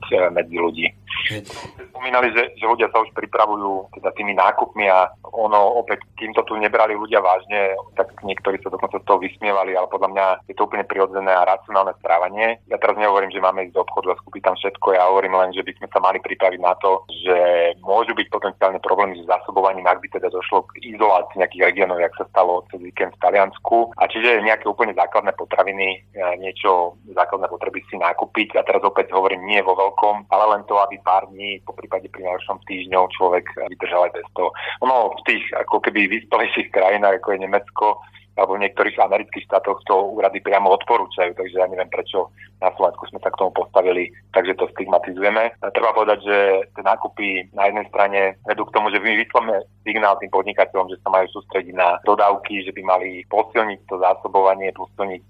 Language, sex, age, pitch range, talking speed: Slovak, male, 30-49, 95-100 Hz, 190 wpm